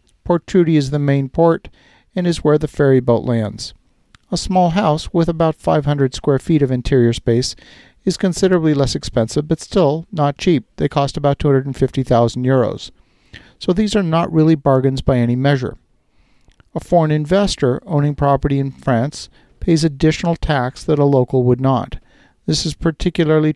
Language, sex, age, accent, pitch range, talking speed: English, male, 50-69, American, 130-160 Hz, 165 wpm